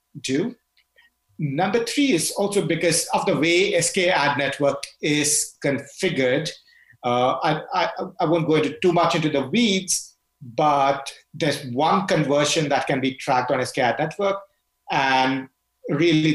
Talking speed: 145 wpm